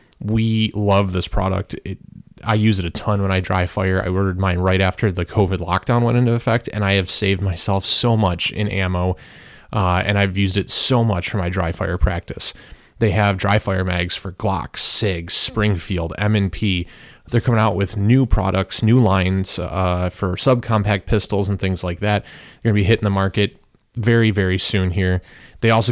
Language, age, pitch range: English, 30-49, 90-105 Hz